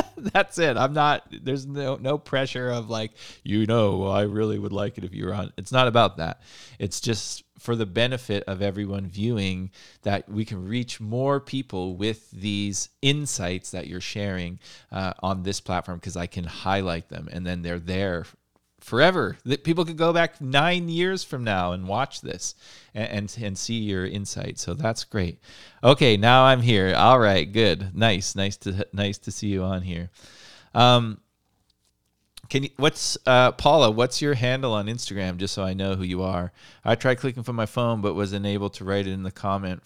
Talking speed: 195 wpm